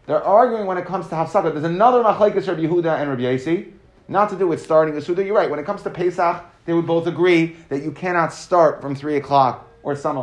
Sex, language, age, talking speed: male, English, 30-49, 245 wpm